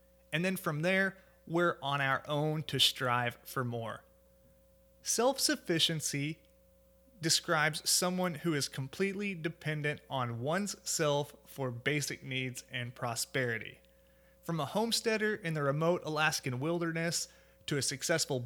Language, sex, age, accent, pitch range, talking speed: English, male, 30-49, American, 120-175 Hz, 125 wpm